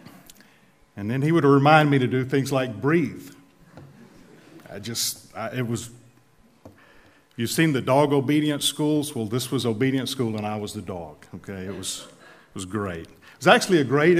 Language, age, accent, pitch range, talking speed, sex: English, 50-69, American, 120-145 Hz, 180 wpm, male